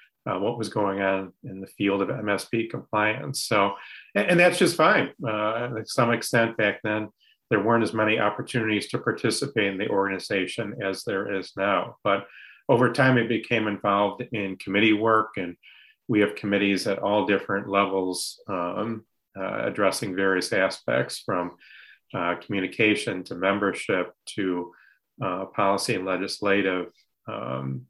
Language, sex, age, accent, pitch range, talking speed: English, male, 40-59, American, 100-115 Hz, 150 wpm